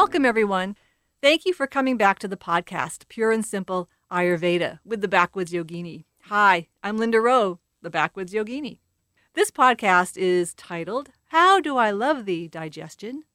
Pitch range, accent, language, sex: 180-255 Hz, American, English, female